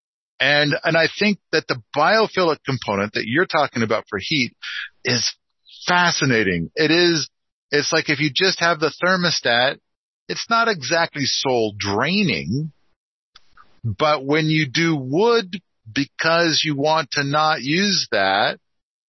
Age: 50-69